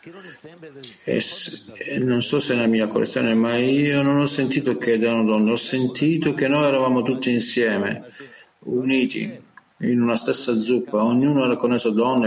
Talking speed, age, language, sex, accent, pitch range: 155 wpm, 50-69, Italian, male, native, 115-140 Hz